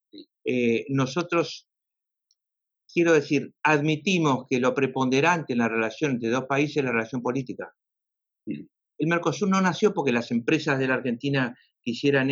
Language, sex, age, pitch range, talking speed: English, male, 60-79, 125-160 Hz, 140 wpm